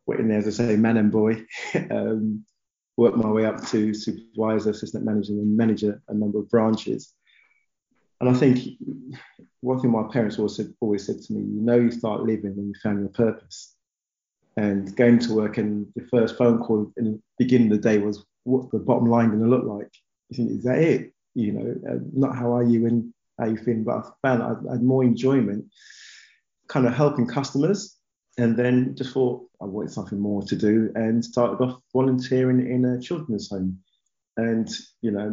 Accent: British